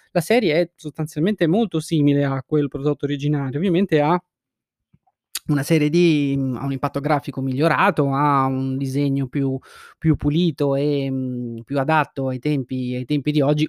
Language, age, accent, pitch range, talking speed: Italian, 20-39, native, 130-155 Hz, 160 wpm